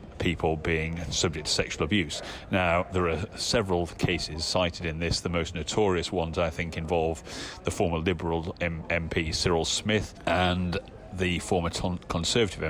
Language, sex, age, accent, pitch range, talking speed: English, male, 40-59, British, 80-90 Hz, 155 wpm